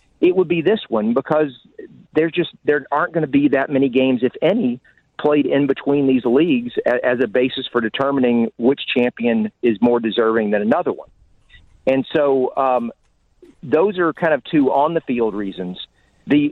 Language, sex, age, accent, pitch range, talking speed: English, male, 40-59, American, 120-145 Hz, 165 wpm